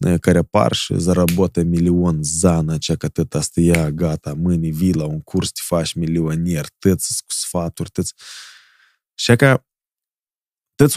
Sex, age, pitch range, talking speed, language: male, 20-39, 95-145 Hz, 140 wpm, Romanian